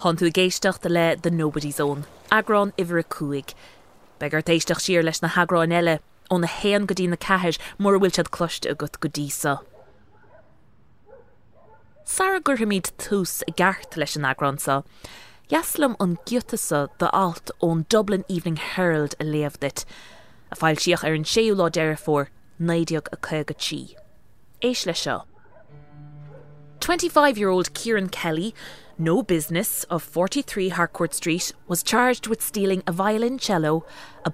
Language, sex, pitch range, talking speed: English, female, 150-195 Hz, 135 wpm